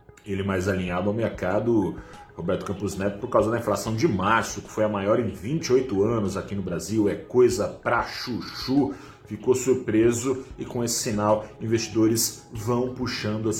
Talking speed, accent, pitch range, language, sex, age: 170 wpm, Brazilian, 100-125 Hz, Portuguese, male, 40-59